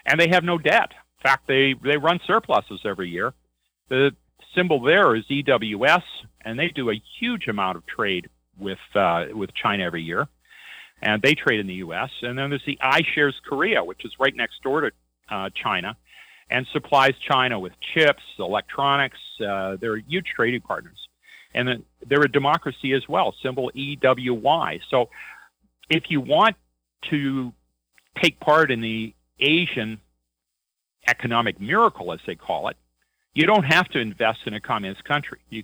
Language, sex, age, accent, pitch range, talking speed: English, male, 50-69, American, 110-145 Hz, 160 wpm